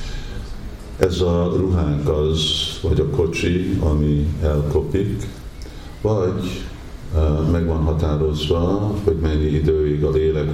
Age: 50-69